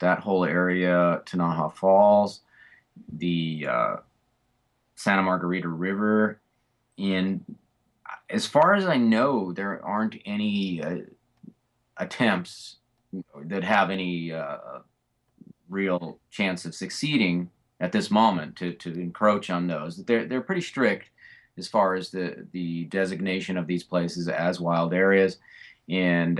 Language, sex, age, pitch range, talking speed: English, male, 30-49, 90-105 Hz, 125 wpm